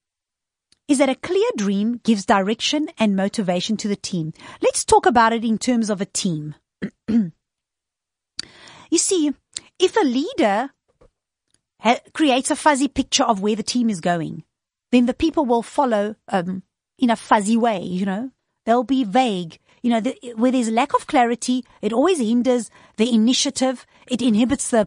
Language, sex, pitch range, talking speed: English, female, 210-275 Hz, 160 wpm